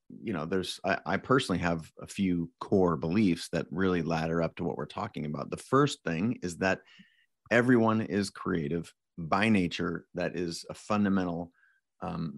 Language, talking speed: English, 170 wpm